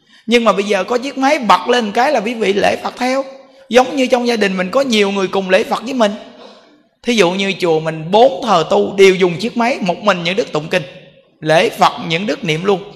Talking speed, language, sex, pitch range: 255 wpm, Vietnamese, male, 145-215 Hz